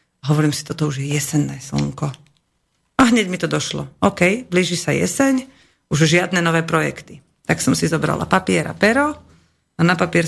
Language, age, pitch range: Slovak, 40-59, 150-195 Hz